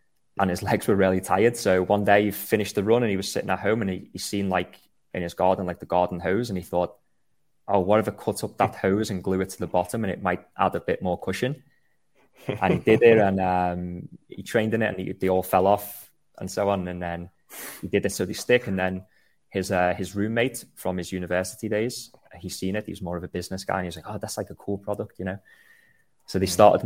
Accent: British